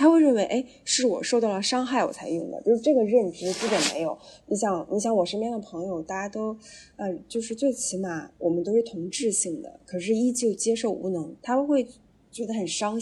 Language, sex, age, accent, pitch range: Chinese, female, 10-29, native, 185-245 Hz